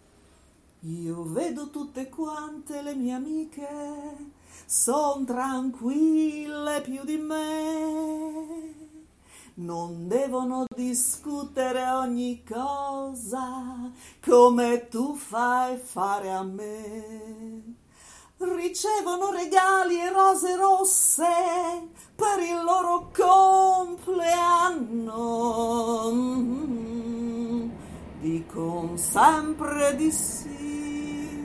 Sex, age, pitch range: female, 40-59, 225-310 Hz